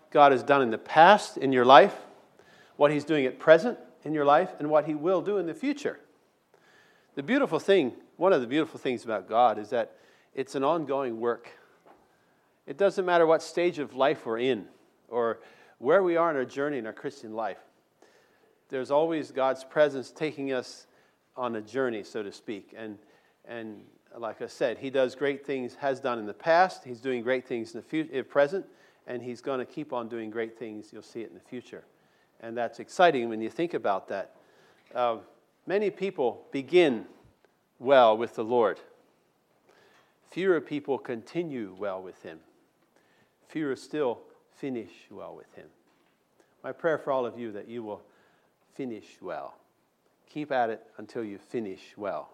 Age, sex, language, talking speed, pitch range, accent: 40-59, male, English, 180 wpm, 125-175 Hz, American